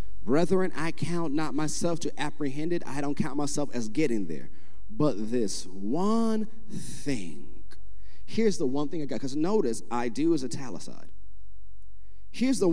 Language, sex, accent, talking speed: English, male, American, 160 wpm